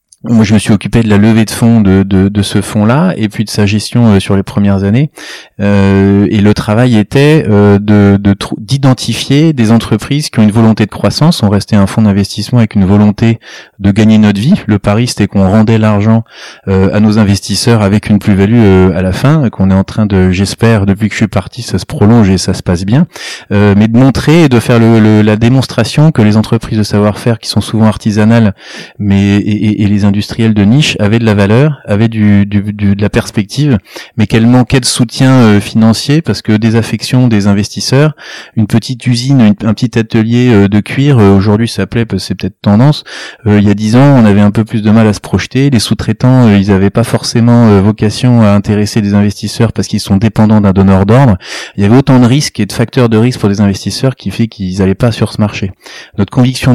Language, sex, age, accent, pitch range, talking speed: French, male, 30-49, French, 100-115 Hz, 235 wpm